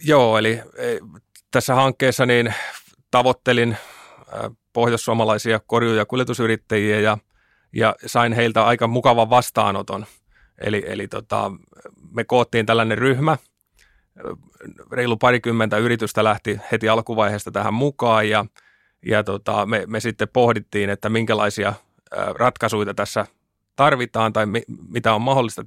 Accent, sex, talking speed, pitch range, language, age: native, male, 105 wpm, 105-120 Hz, Finnish, 30-49